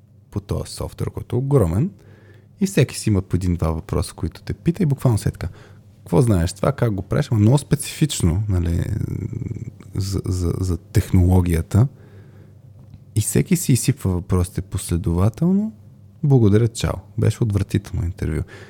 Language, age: Bulgarian, 20-39